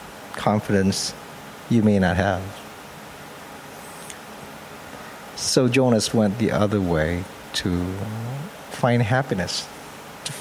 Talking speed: 85 wpm